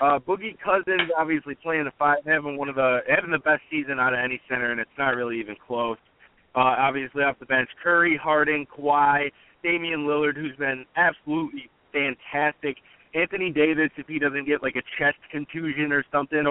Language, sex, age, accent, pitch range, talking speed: English, male, 30-49, American, 125-155 Hz, 185 wpm